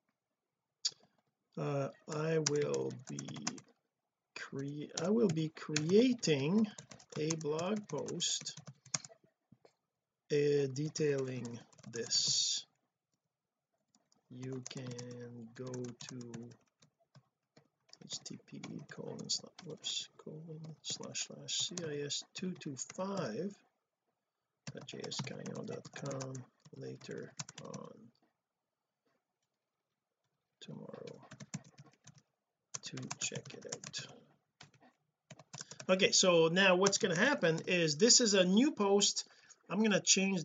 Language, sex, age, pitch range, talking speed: English, male, 50-69, 140-180 Hz, 80 wpm